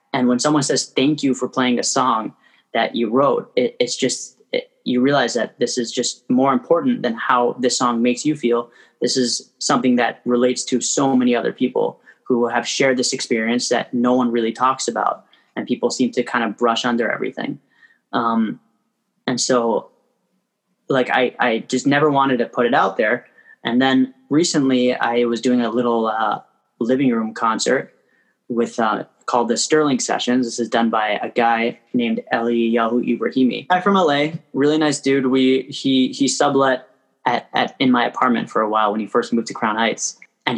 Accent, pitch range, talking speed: American, 120-135 Hz, 190 wpm